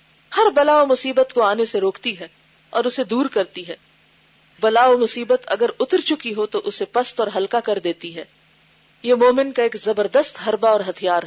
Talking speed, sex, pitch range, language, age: 195 wpm, female, 205-285 Hz, Urdu, 40-59